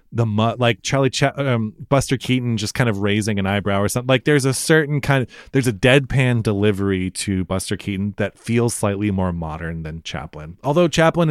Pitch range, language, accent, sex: 95-135 Hz, English, American, male